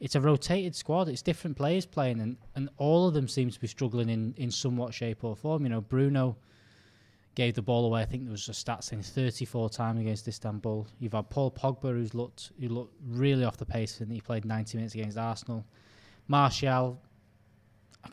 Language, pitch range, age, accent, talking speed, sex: English, 110-140 Hz, 10-29, British, 200 wpm, male